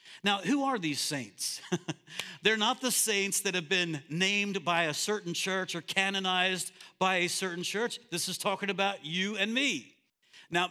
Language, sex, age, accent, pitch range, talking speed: English, male, 60-79, American, 180-225 Hz, 175 wpm